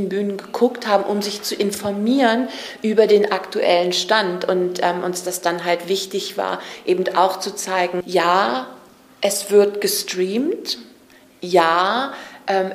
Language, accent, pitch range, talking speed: German, German, 175-195 Hz, 135 wpm